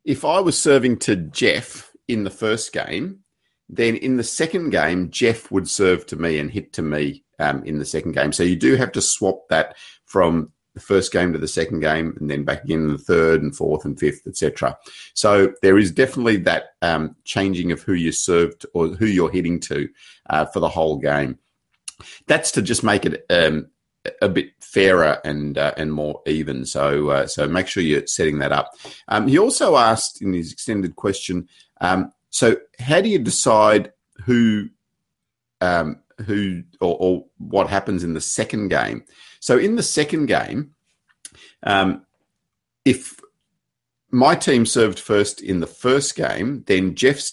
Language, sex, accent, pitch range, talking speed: English, male, Australian, 80-115 Hz, 180 wpm